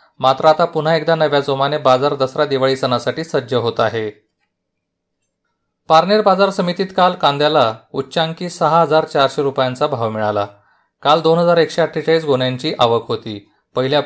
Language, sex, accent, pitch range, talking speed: Marathi, male, native, 125-160 Hz, 125 wpm